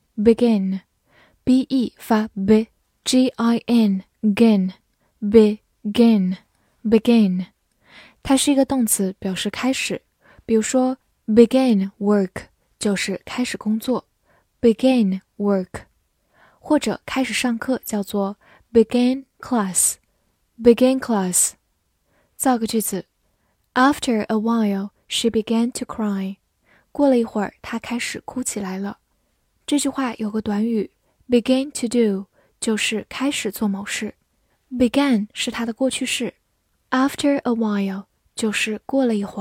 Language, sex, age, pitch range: Chinese, female, 10-29, 205-250 Hz